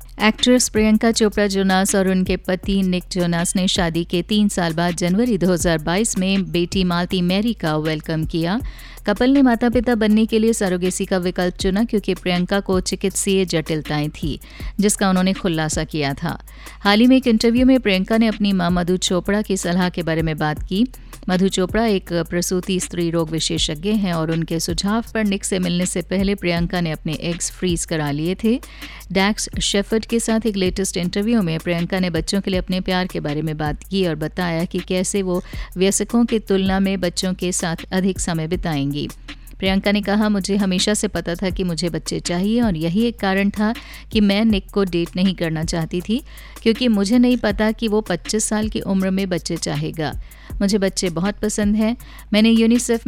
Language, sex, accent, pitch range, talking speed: English, female, Indian, 170-210 Hz, 175 wpm